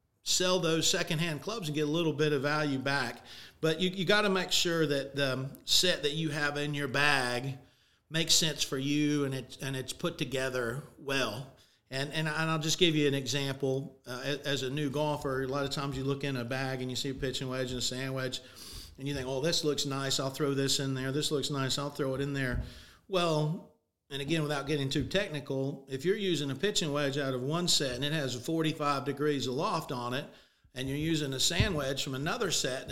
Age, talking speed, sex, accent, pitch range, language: 40-59, 230 wpm, male, American, 135-160 Hz, English